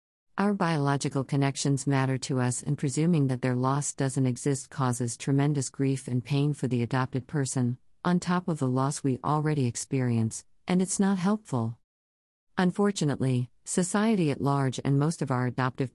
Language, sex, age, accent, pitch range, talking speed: English, female, 50-69, American, 130-155 Hz, 160 wpm